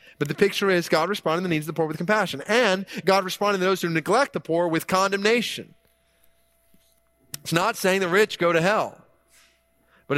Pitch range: 115-180 Hz